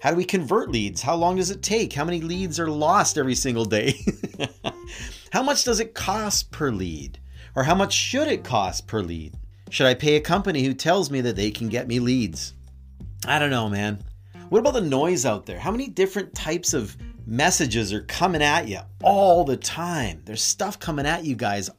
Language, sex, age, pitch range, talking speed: English, male, 40-59, 105-160 Hz, 210 wpm